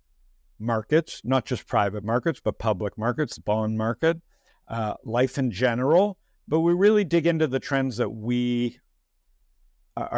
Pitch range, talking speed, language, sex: 110-135 Hz, 140 wpm, English, male